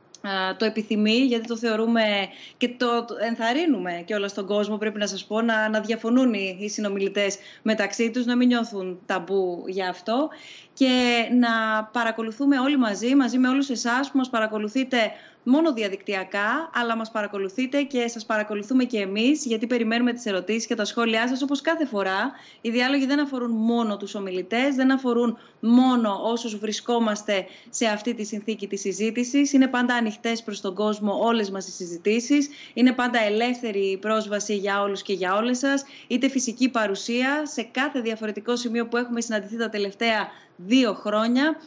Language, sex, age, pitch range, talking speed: Greek, female, 20-39, 210-260 Hz, 165 wpm